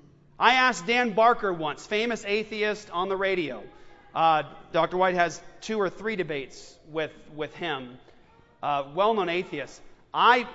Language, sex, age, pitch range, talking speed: English, male, 40-59, 185-255 Hz, 140 wpm